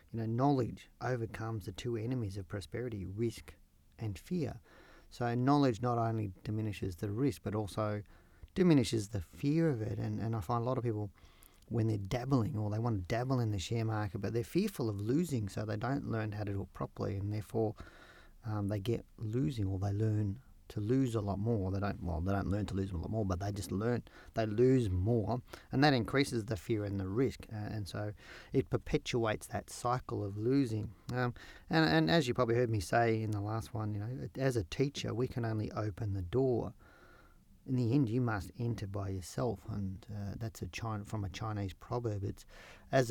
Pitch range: 100-120 Hz